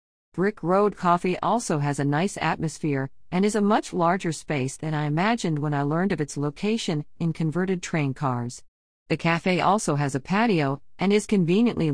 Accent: American